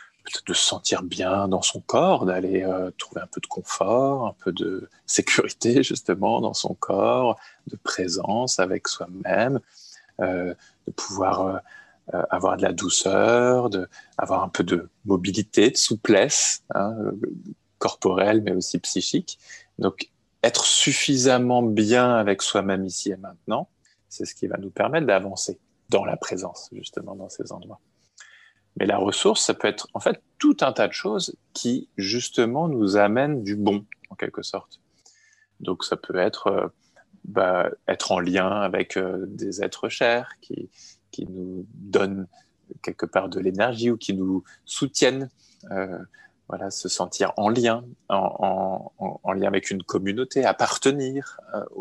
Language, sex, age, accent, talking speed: French, male, 20-39, French, 155 wpm